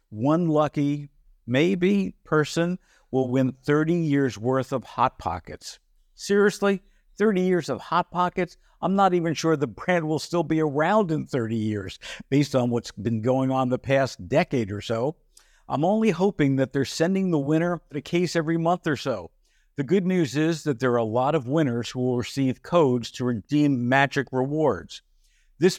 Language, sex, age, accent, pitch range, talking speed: English, male, 60-79, American, 125-155 Hz, 175 wpm